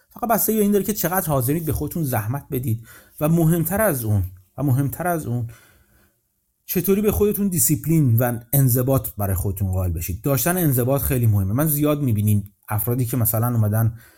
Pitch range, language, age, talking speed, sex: 115-160 Hz, Persian, 30-49, 175 wpm, male